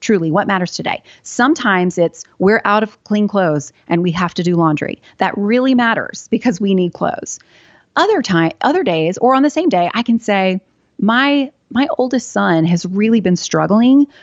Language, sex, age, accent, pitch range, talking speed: English, female, 30-49, American, 175-230 Hz, 185 wpm